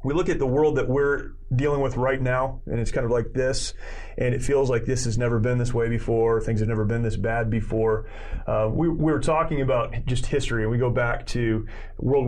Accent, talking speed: American, 240 wpm